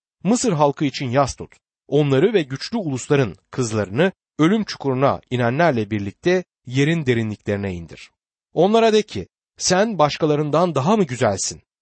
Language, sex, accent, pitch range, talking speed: Turkish, male, native, 115-180 Hz, 125 wpm